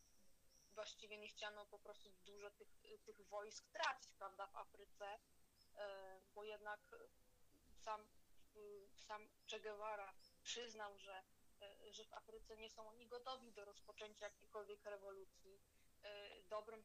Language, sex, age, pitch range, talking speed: Polish, female, 20-39, 200-215 Hz, 120 wpm